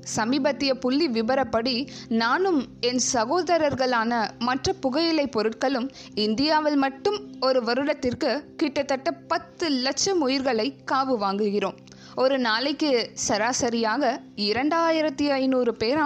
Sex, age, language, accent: female, 20-39, Tamil, native